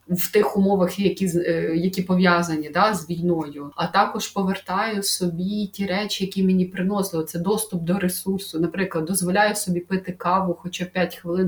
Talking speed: 155 wpm